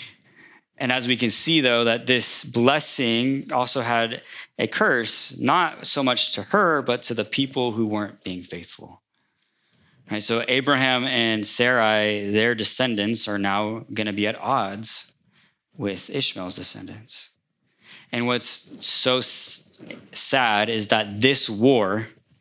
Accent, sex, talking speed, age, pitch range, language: American, male, 140 wpm, 20-39, 105-130 Hz, English